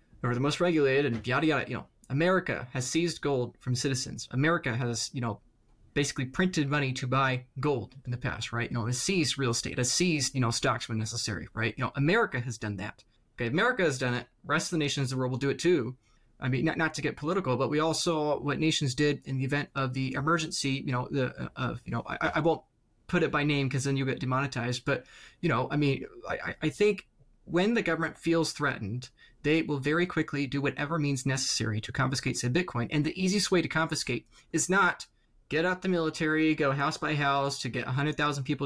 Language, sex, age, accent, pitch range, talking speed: English, male, 20-39, American, 125-165 Hz, 235 wpm